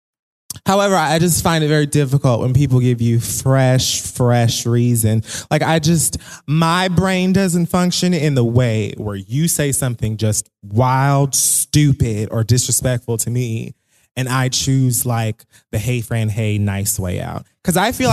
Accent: American